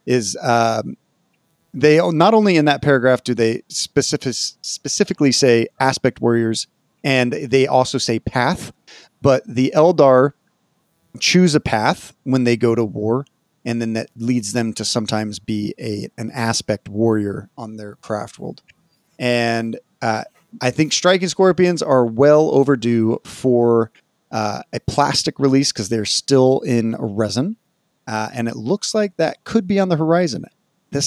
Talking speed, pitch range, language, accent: 150 wpm, 115-155 Hz, English, American